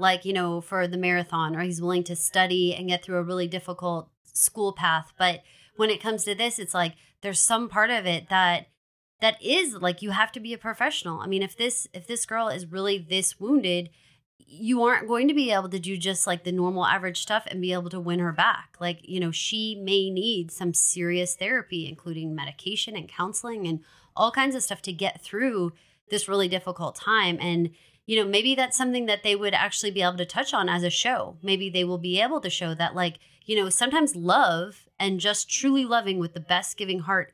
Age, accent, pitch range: 20-39, American, 175-210 Hz